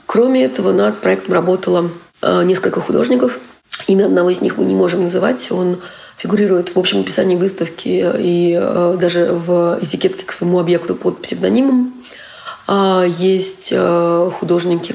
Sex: female